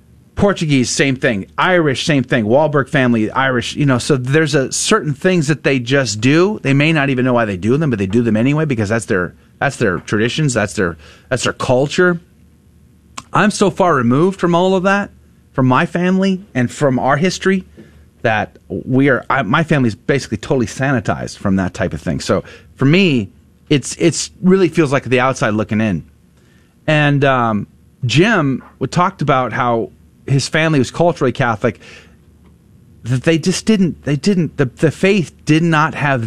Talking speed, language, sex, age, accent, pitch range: 180 wpm, English, male, 30-49, American, 110-155 Hz